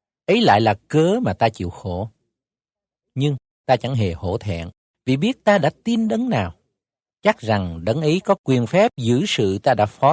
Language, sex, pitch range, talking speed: Vietnamese, male, 100-135 Hz, 195 wpm